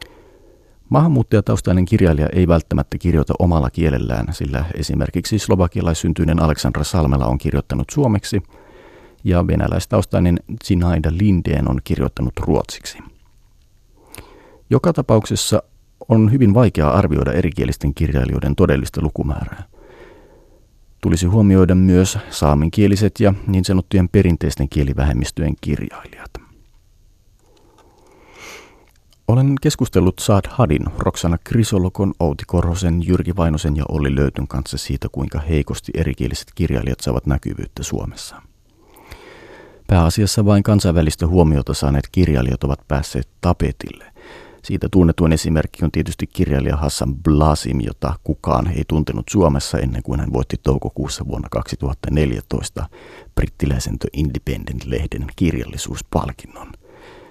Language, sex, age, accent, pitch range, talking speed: Finnish, male, 40-59, native, 70-95 Hz, 100 wpm